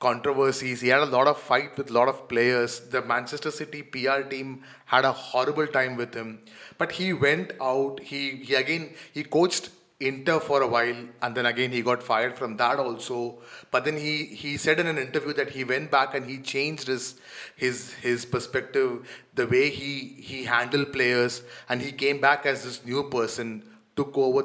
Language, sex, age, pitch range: English, male, 30-49, 130-175 Hz